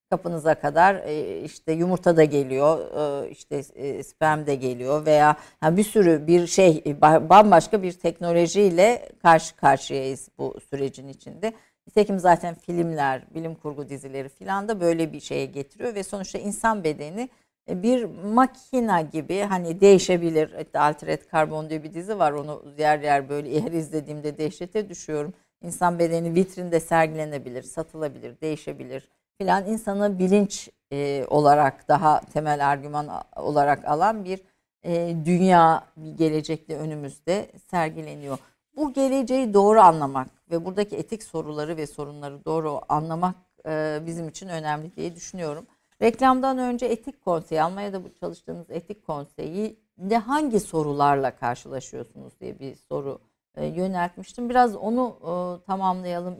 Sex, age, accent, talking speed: female, 60-79, native, 130 wpm